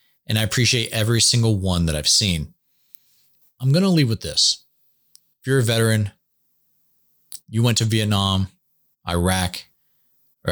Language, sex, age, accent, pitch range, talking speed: English, male, 30-49, American, 90-115 Hz, 135 wpm